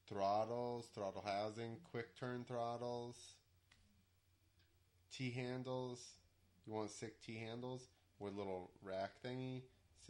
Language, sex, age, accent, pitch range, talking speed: English, male, 30-49, American, 90-110 Hz, 95 wpm